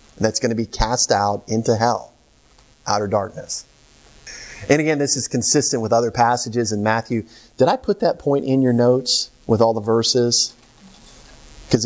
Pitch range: 110-130 Hz